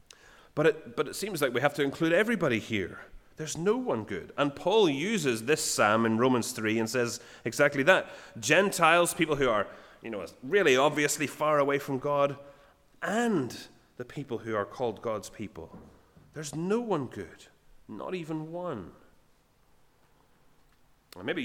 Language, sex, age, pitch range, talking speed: English, male, 30-49, 115-150 Hz, 155 wpm